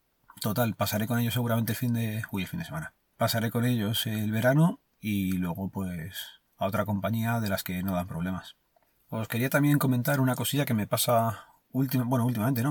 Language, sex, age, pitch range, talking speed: Spanish, male, 30-49, 105-130 Hz, 205 wpm